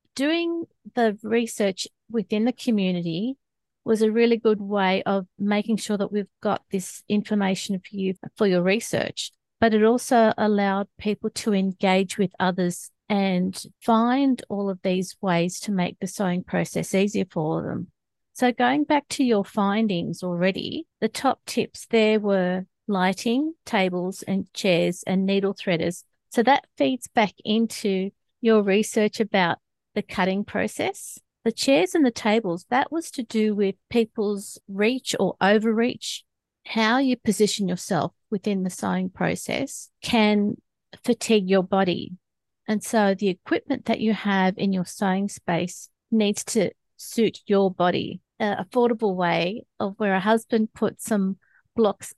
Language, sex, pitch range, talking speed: English, female, 190-225 Hz, 150 wpm